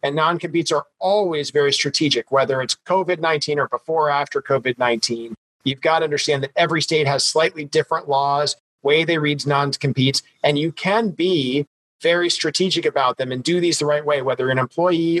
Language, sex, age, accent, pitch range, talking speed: English, male, 40-59, American, 140-175 Hz, 180 wpm